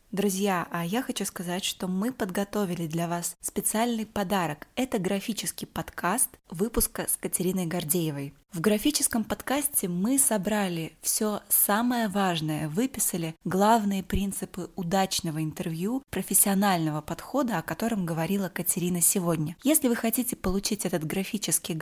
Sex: female